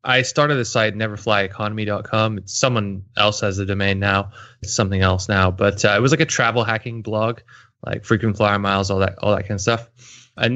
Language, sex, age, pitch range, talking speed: English, male, 20-39, 105-130 Hz, 210 wpm